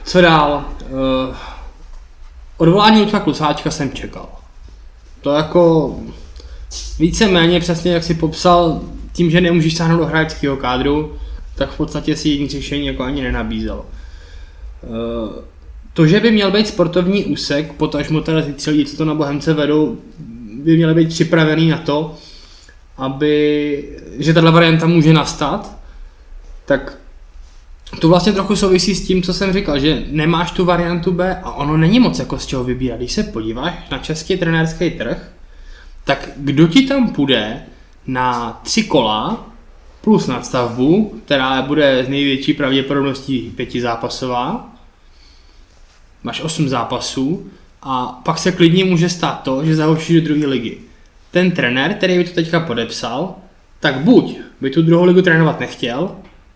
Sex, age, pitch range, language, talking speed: male, 20-39, 125-170 Hz, Czech, 145 wpm